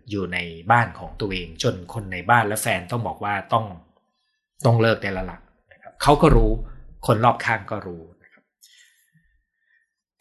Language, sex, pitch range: Thai, male, 100-140 Hz